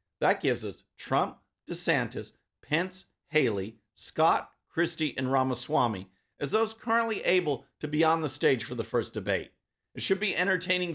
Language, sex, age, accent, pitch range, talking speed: English, male, 50-69, American, 150-200 Hz, 155 wpm